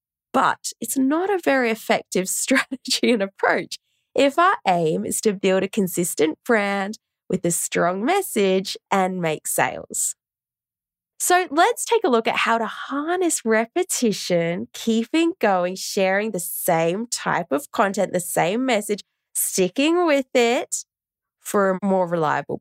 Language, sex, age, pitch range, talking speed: English, female, 10-29, 185-275 Hz, 140 wpm